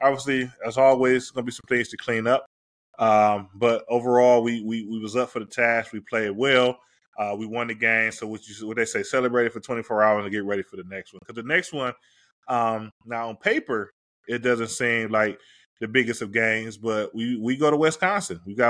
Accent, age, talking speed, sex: American, 20-39, 230 wpm, male